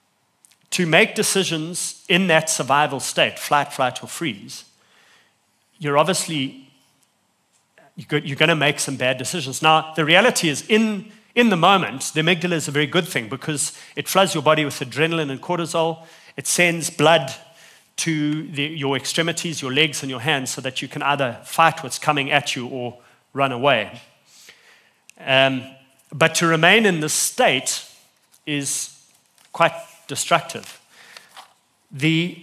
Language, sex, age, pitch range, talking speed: English, male, 40-59, 135-165 Hz, 145 wpm